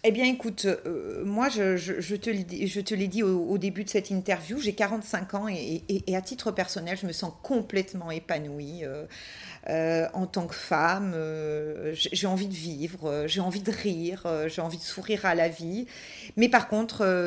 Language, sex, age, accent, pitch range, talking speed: French, female, 40-59, French, 180-220 Hz, 195 wpm